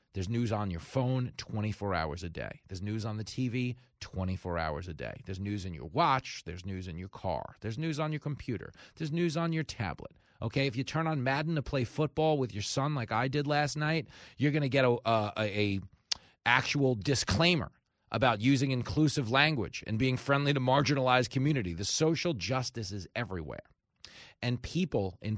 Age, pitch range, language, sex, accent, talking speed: 30-49, 105-140 Hz, English, male, American, 195 wpm